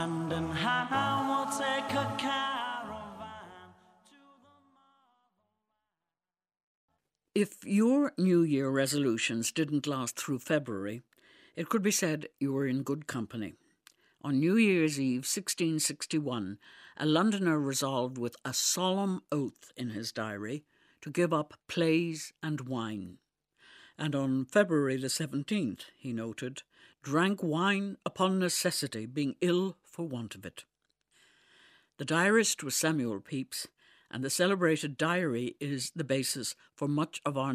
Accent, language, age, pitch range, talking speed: British, English, 60-79, 125-180 Hz, 115 wpm